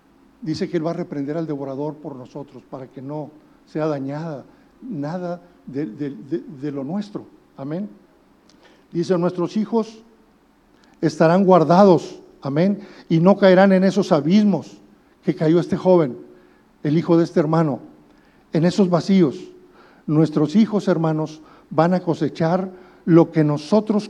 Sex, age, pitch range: male, 50-69, 160-210 Hz